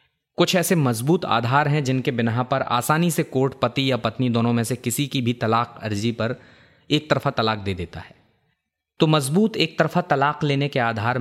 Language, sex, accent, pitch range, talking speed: Hindi, male, native, 115-145 Hz, 200 wpm